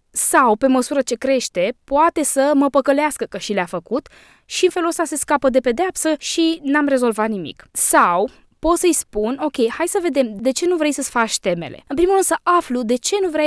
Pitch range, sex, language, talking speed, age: 225-290 Hz, female, Romanian, 220 wpm, 20-39